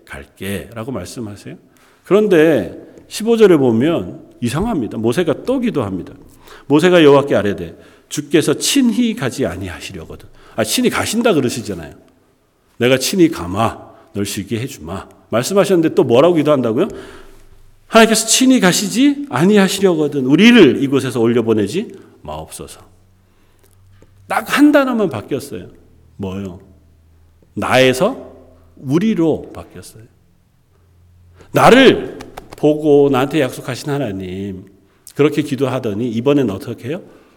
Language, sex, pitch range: Korean, male, 100-155 Hz